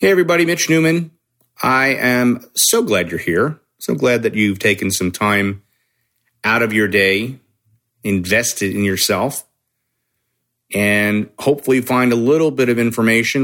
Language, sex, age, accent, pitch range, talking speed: English, male, 40-59, American, 100-120 Hz, 145 wpm